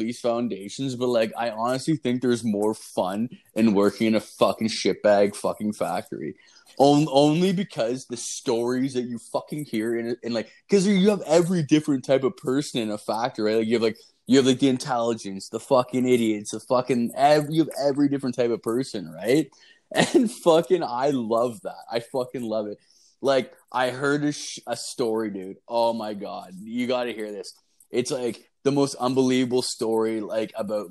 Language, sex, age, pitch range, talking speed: English, male, 20-39, 110-135 Hz, 190 wpm